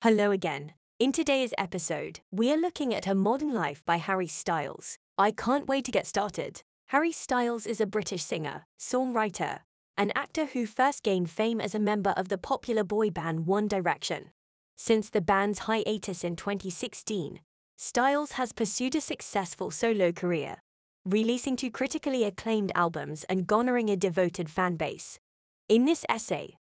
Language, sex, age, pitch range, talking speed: English, female, 20-39, 190-255 Hz, 160 wpm